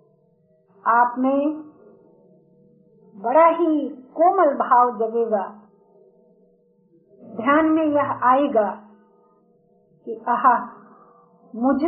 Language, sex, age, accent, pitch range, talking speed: Hindi, female, 50-69, native, 245-315 Hz, 70 wpm